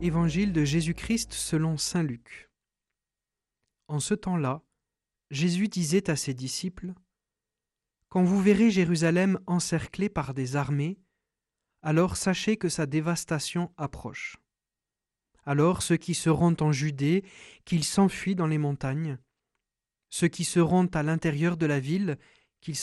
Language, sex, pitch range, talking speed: French, male, 145-175 Hz, 130 wpm